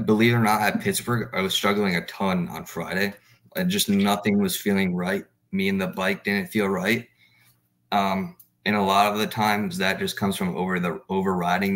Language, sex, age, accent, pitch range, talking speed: English, male, 30-49, American, 85-120 Hz, 205 wpm